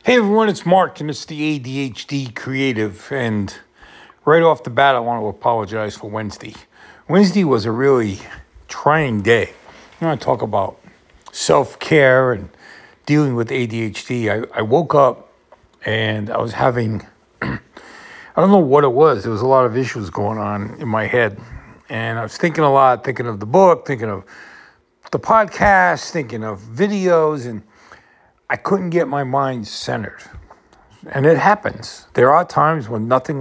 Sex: male